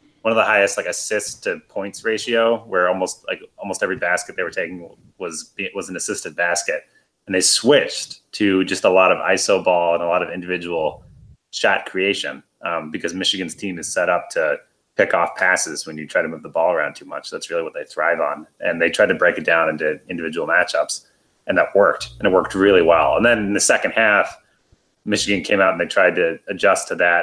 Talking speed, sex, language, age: 225 wpm, male, English, 30-49